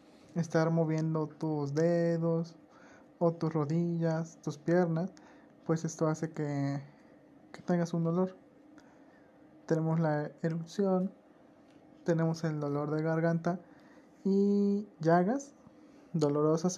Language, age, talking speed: Spanish, 20-39, 100 wpm